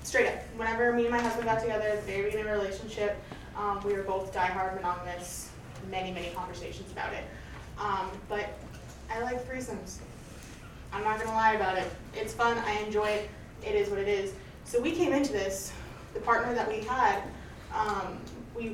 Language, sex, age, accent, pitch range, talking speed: English, female, 20-39, American, 205-245 Hz, 185 wpm